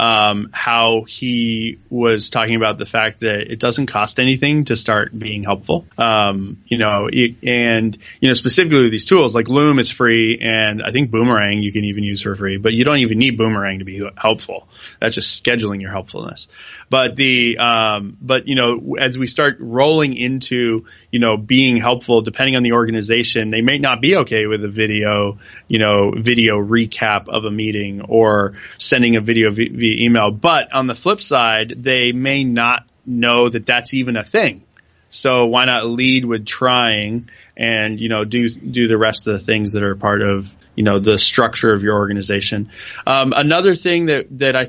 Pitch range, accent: 105-125 Hz, American